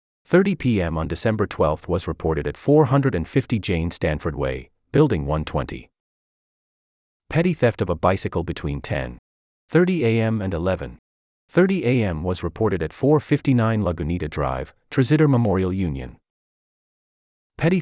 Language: English